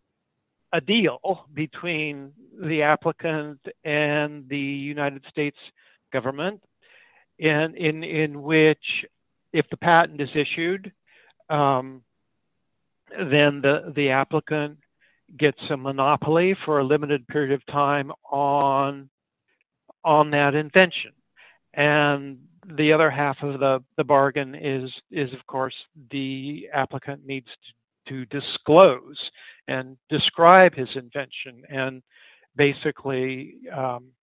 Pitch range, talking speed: 135-155 Hz, 110 wpm